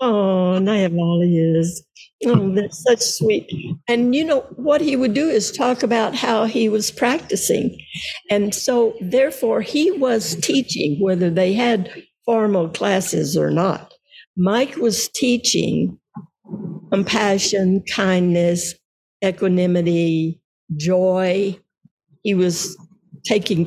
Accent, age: American, 60-79